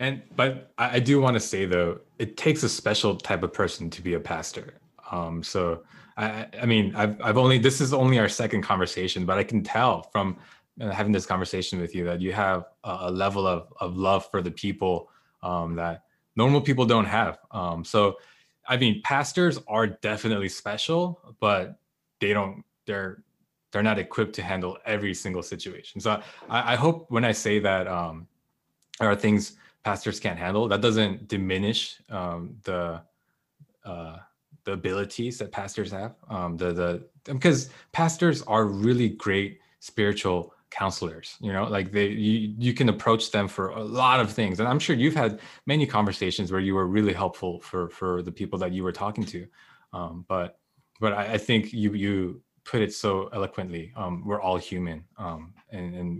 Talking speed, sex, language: 180 wpm, male, English